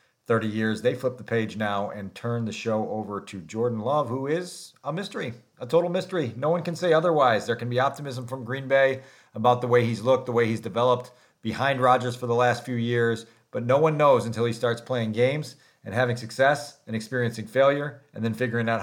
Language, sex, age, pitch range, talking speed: English, male, 40-59, 115-140 Hz, 220 wpm